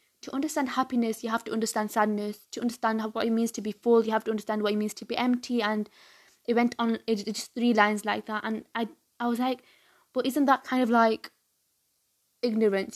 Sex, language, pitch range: female, English, 215-235 Hz